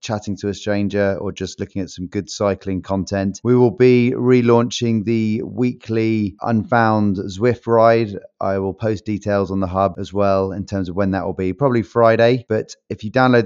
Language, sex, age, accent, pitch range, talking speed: English, male, 30-49, British, 95-115 Hz, 190 wpm